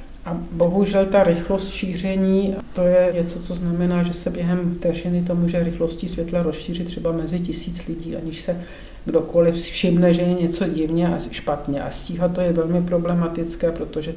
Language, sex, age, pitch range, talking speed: Czech, male, 50-69, 165-180 Hz, 170 wpm